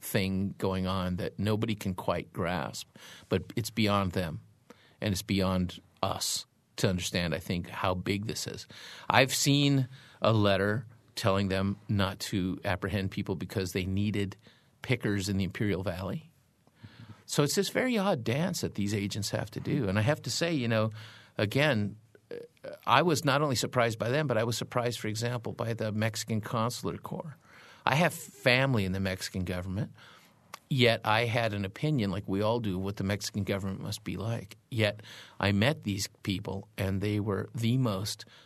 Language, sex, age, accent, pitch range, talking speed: English, male, 50-69, American, 100-120 Hz, 175 wpm